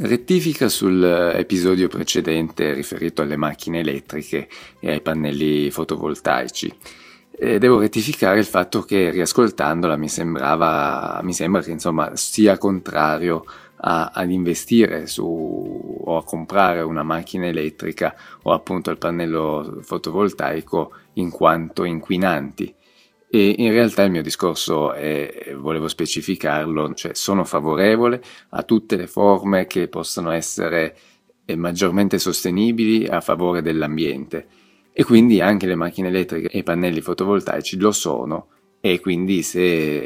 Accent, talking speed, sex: native, 125 wpm, male